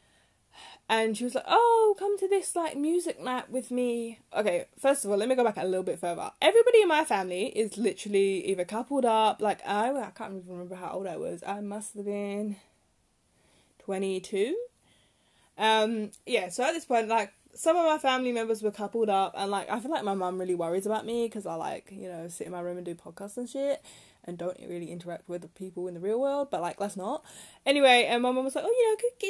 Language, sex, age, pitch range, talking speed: English, female, 10-29, 195-295 Hz, 235 wpm